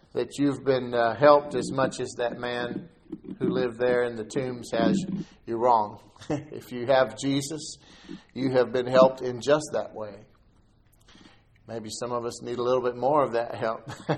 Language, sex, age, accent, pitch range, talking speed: English, male, 50-69, American, 115-135 Hz, 180 wpm